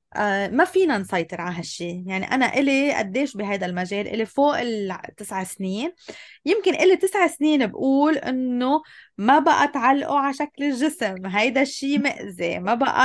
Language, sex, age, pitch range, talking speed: Arabic, female, 20-39, 210-285 Hz, 145 wpm